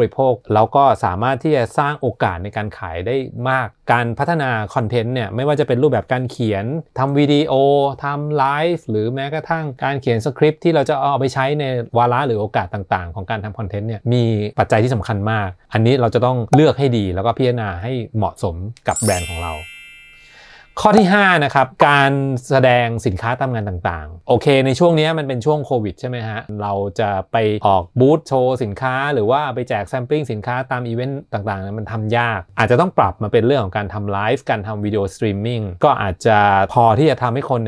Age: 20-39